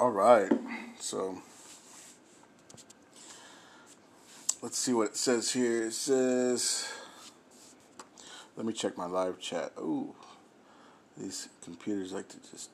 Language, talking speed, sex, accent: English, 110 wpm, male, American